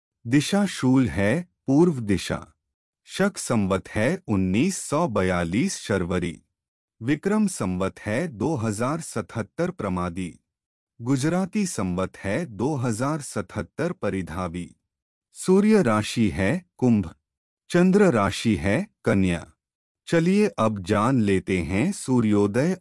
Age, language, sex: 30-49, Hindi, male